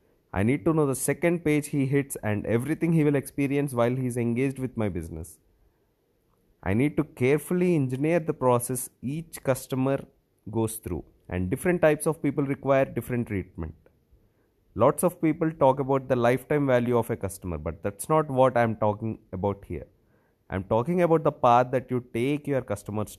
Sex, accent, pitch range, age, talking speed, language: male, Indian, 105-140 Hz, 30-49, 175 wpm, English